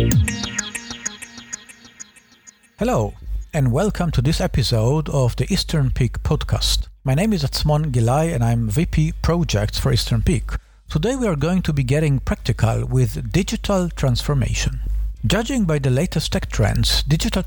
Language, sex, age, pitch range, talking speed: English, male, 50-69, 115-160 Hz, 140 wpm